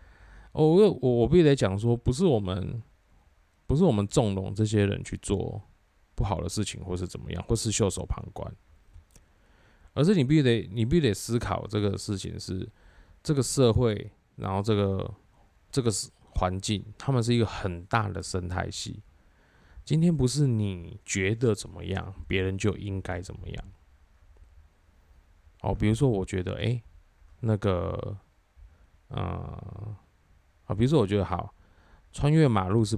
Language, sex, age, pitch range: Chinese, male, 20-39, 90-115 Hz